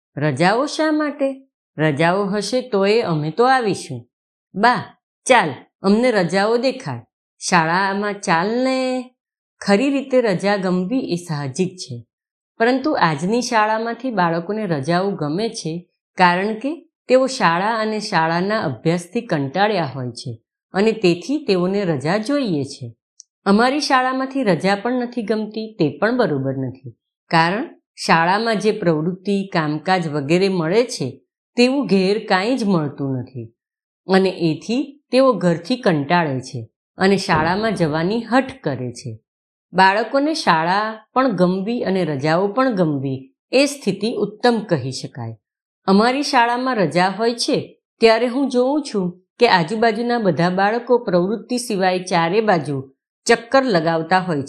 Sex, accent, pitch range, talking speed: female, native, 165-240 Hz, 125 wpm